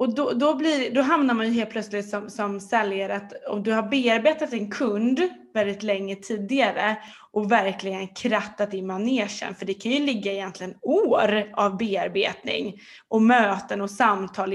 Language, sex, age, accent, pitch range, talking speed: Swedish, female, 20-39, native, 195-265 Hz, 170 wpm